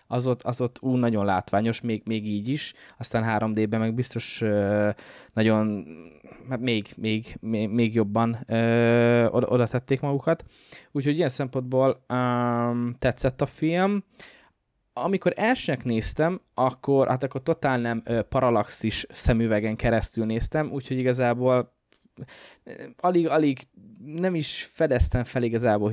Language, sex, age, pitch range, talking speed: Hungarian, male, 20-39, 115-150 Hz, 130 wpm